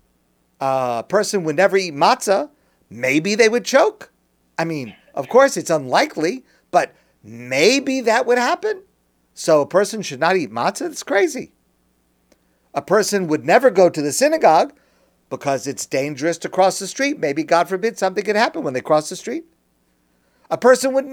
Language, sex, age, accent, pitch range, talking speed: English, male, 50-69, American, 130-200 Hz, 170 wpm